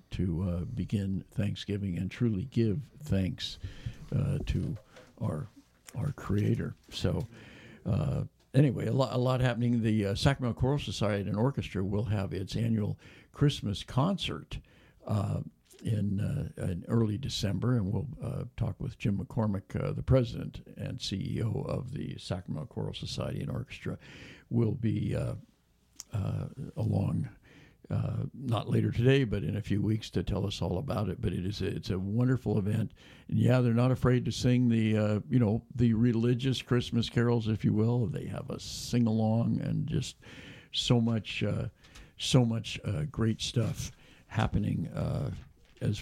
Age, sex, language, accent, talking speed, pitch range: 60-79, male, English, American, 160 wpm, 105-125 Hz